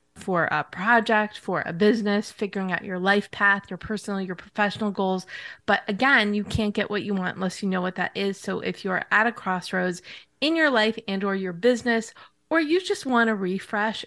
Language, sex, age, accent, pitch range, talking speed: English, female, 20-39, American, 185-215 Hz, 210 wpm